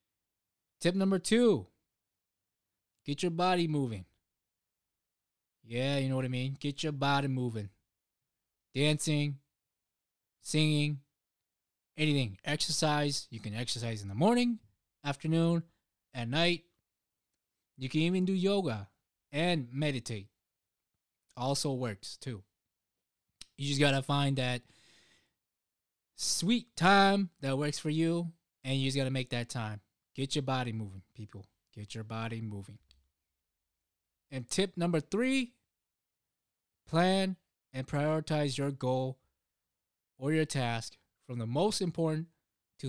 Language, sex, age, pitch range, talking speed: English, male, 20-39, 110-150 Hz, 120 wpm